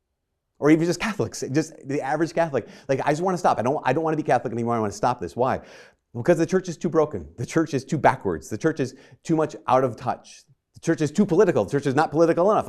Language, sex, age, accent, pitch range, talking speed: English, male, 40-59, American, 80-125 Hz, 280 wpm